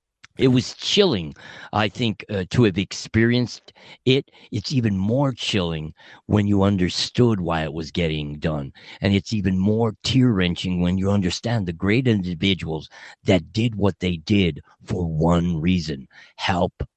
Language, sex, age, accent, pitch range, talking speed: English, male, 50-69, American, 85-120 Hz, 150 wpm